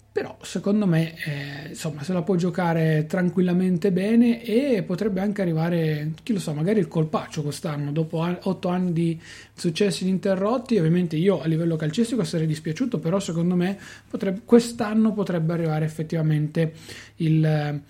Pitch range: 155-190 Hz